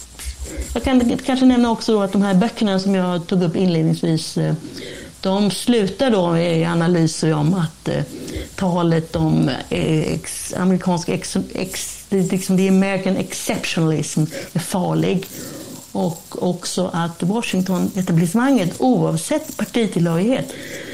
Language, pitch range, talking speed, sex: Swedish, 170-215 Hz, 120 wpm, female